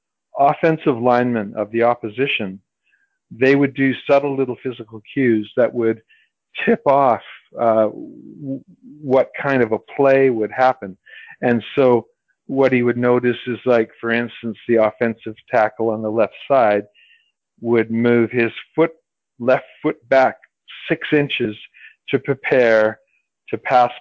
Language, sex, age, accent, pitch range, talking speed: English, male, 50-69, American, 110-130 Hz, 135 wpm